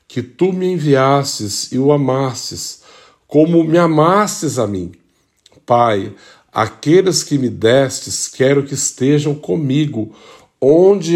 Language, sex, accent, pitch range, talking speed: Portuguese, male, Brazilian, 115-150 Hz, 120 wpm